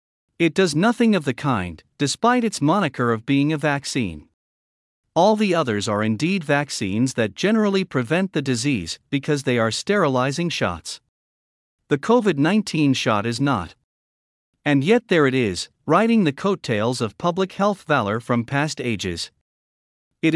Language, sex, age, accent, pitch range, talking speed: English, male, 50-69, American, 110-170 Hz, 150 wpm